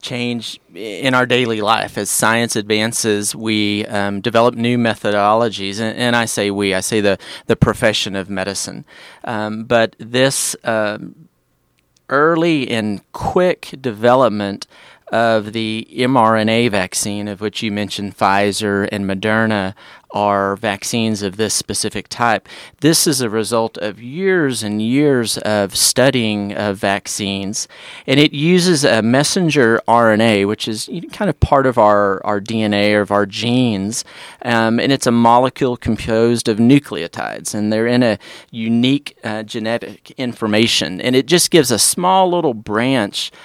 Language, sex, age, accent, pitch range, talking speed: English, male, 30-49, American, 105-130 Hz, 145 wpm